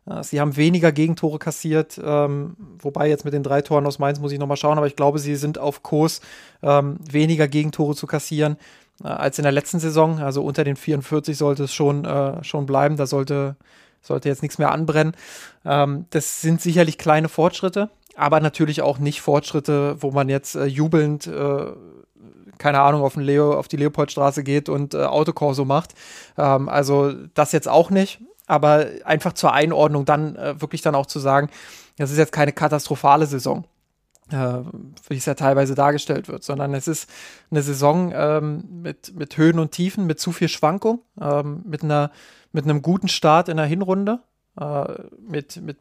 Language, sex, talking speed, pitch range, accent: German, male, 185 wpm, 145-160 Hz, German